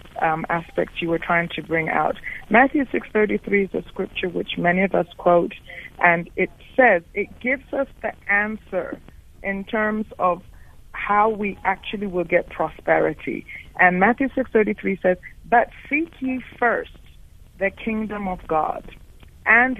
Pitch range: 185-235 Hz